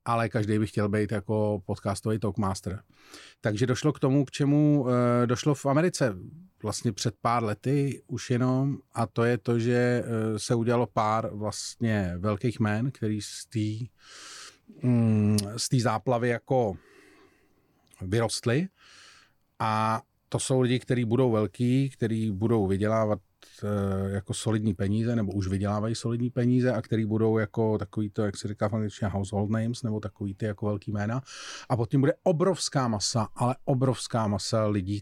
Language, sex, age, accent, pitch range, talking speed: Czech, male, 40-59, native, 105-125 Hz, 150 wpm